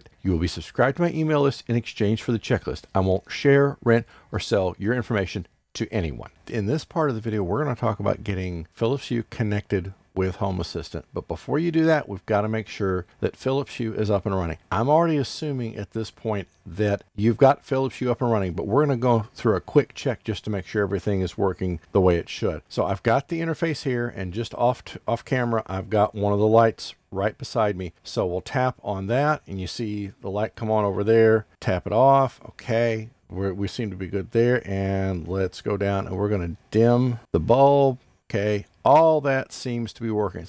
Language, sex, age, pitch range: English, male, 50-69, 95-125 Hz